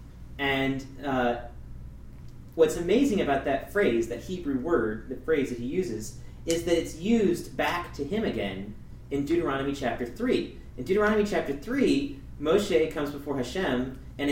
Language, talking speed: English, 150 wpm